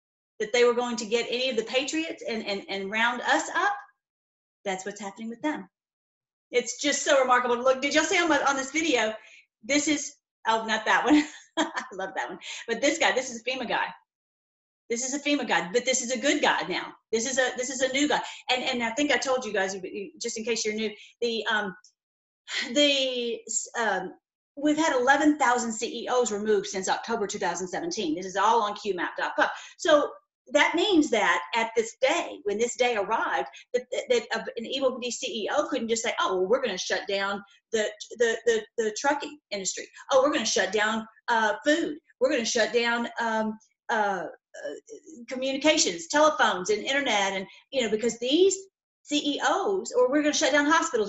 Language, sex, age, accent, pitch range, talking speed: English, female, 40-59, American, 225-300 Hz, 195 wpm